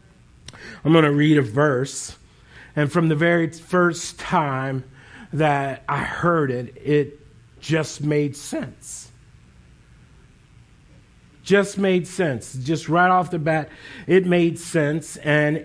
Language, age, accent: English, 50-69, American